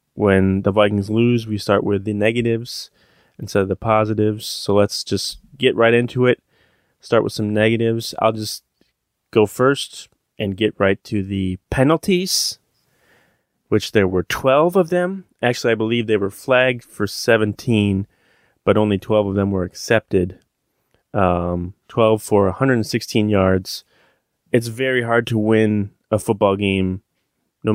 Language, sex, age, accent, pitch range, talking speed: English, male, 30-49, American, 100-115 Hz, 150 wpm